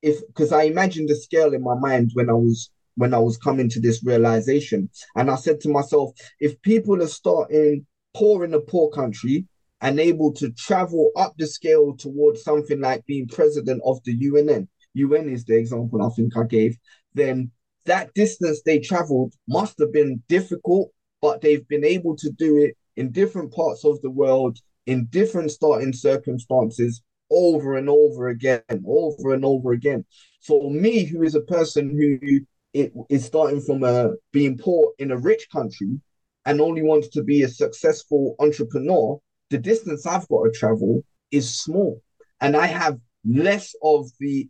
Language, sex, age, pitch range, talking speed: English, male, 20-39, 125-155 Hz, 175 wpm